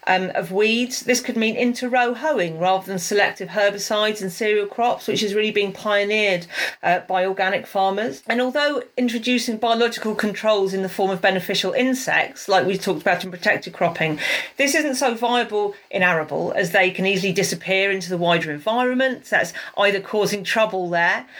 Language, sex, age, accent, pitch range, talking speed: English, female, 40-59, British, 180-225 Hz, 175 wpm